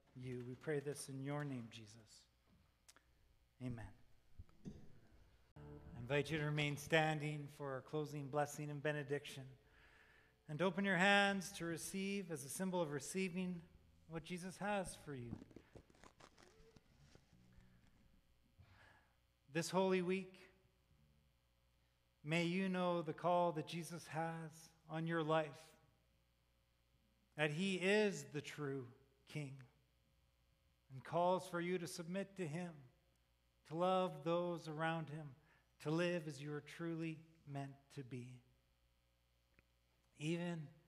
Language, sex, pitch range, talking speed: English, male, 115-165 Hz, 115 wpm